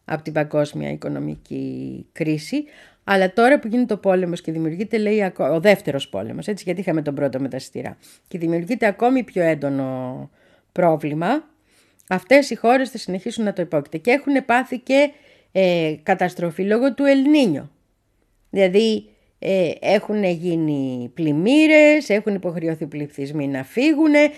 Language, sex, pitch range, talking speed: Greek, female, 155-220 Hz, 140 wpm